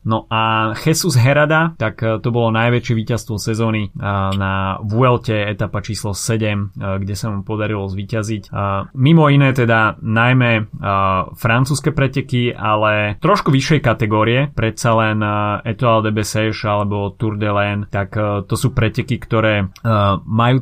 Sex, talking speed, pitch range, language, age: male, 130 wpm, 105-120 Hz, Slovak, 20-39